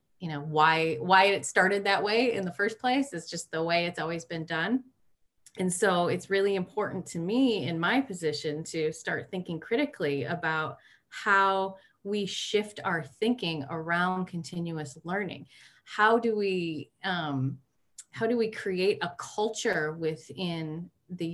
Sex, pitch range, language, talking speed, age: female, 150-190 Hz, English, 155 wpm, 30-49